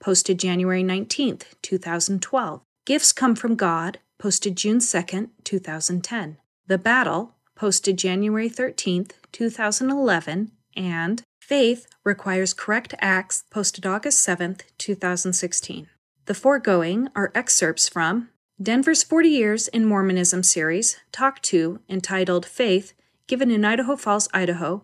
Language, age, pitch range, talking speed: English, 30-49, 180-225 Hz, 115 wpm